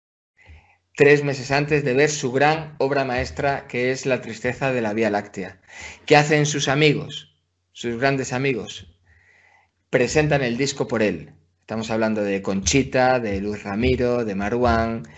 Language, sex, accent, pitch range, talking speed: Spanish, male, Spanish, 110-135 Hz, 150 wpm